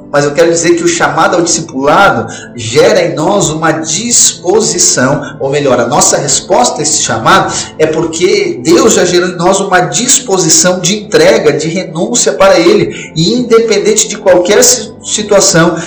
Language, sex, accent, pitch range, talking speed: Portuguese, male, Brazilian, 175-220 Hz, 160 wpm